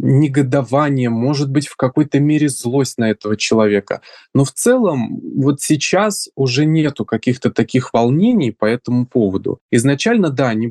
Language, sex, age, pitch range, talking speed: Russian, male, 20-39, 120-145 Hz, 145 wpm